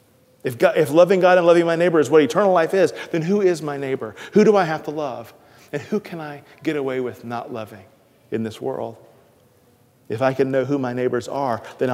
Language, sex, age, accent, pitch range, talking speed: English, male, 40-59, American, 125-170 Hz, 230 wpm